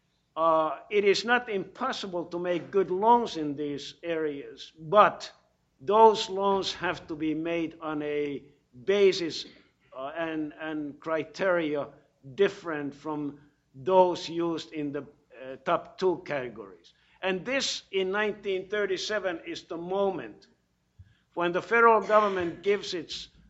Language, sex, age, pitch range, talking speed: English, male, 60-79, 145-185 Hz, 125 wpm